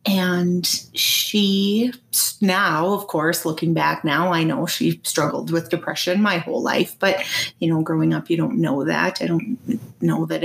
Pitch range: 165-210 Hz